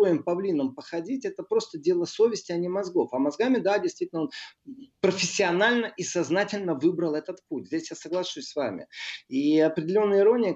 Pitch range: 130-200 Hz